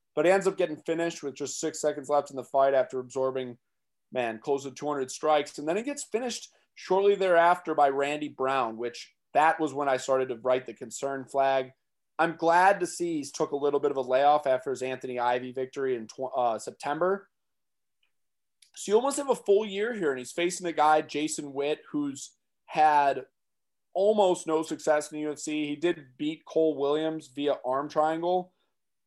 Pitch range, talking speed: 130-165 Hz, 190 wpm